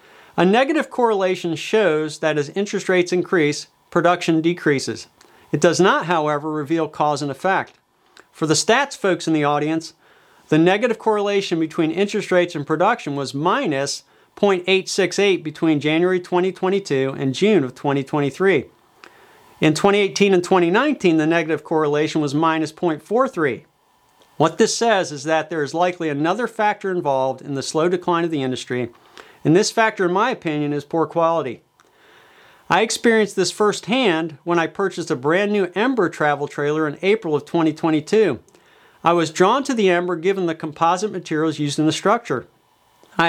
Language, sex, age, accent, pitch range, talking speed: English, male, 40-59, American, 155-195 Hz, 155 wpm